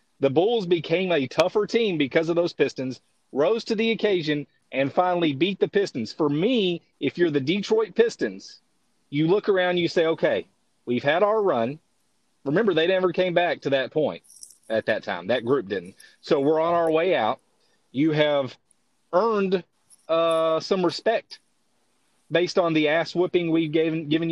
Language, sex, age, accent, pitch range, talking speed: English, male, 30-49, American, 145-190 Hz, 170 wpm